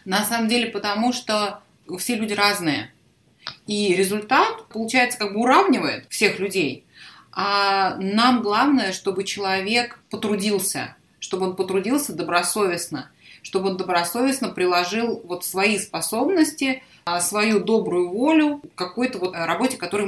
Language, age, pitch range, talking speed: Russian, 30-49, 190-240 Hz, 125 wpm